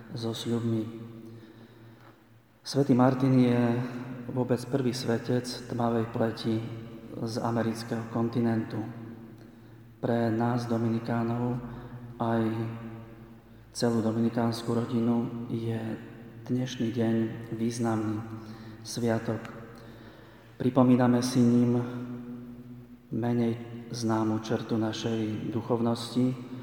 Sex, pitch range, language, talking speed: male, 110-120 Hz, Slovak, 75 wpm